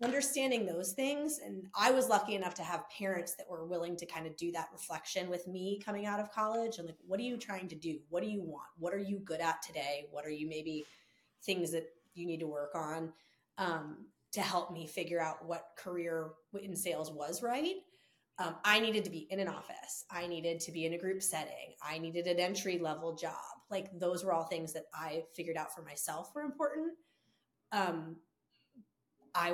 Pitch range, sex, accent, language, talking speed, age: 165-210 Hz, female, American, English, 210 wpm, 30-49